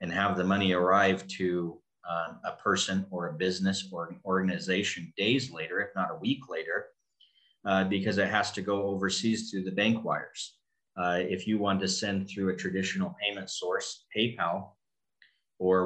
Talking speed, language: 175 wpm, English